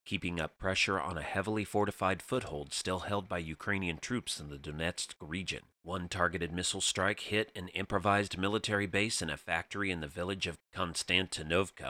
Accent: American